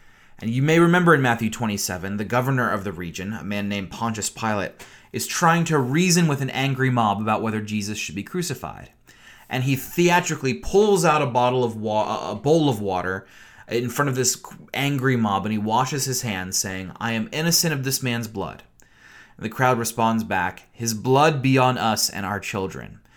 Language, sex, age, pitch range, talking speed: English, male, 30-49, 105-135 Hz, 195 wpm